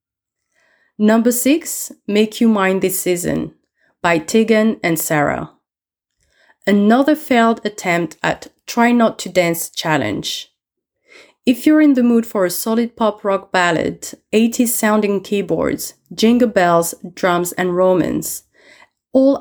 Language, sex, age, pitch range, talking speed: English, female, 30-49, 175-230 Hz, 125 wpm